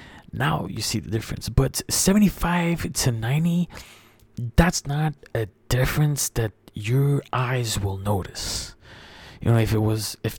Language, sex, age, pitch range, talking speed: English, male, 20-39, 110-140 Hz, 140 wpm